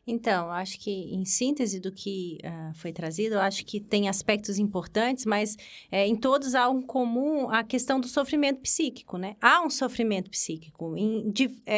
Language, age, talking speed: Portuguese, 30-49, 175 wpm